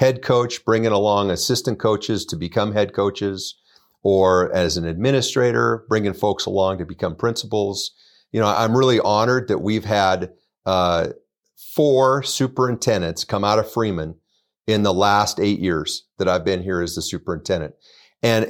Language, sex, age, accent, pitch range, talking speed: English, male, 40-59, American, 95-115 Hz, 155 wpm